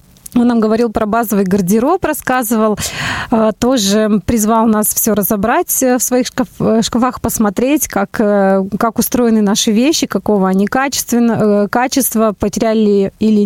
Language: Russian